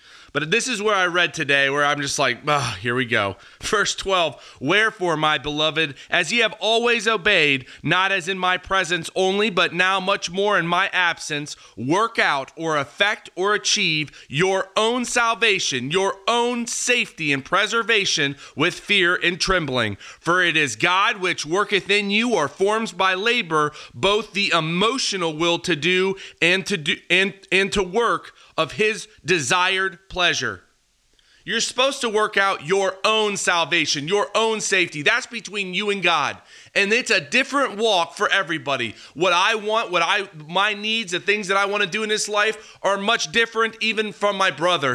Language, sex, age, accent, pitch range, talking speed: English, male, 30-49, American, 165-210 Hz, 180 wpm